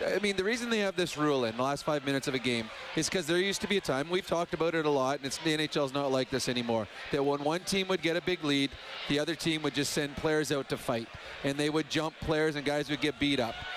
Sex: male